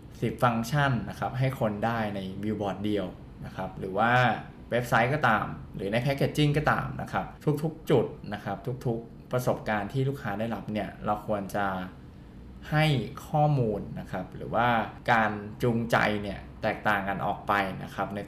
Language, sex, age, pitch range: Thai, male, 20-39, 105-130 Hz